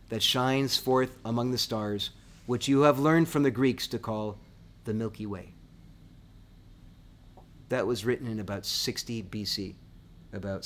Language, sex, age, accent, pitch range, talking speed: English, male, 30-49, American, 105-135 Hz, 145 wpm